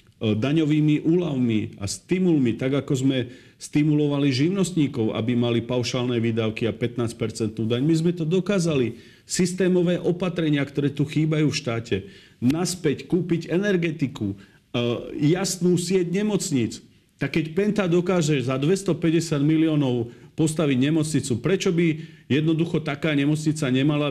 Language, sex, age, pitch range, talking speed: Slovak, male, 40-59, 130-175 Hz, 120 wpm